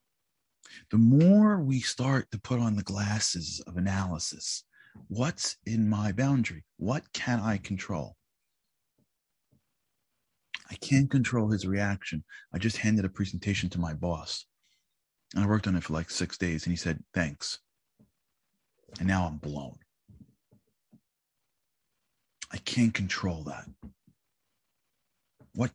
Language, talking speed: English, 125 wpm